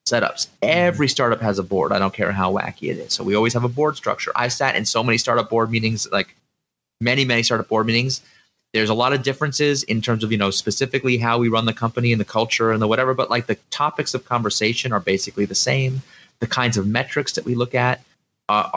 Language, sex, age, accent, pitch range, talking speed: English, male, 30-49, American, 105-125 Hz, 240 wpm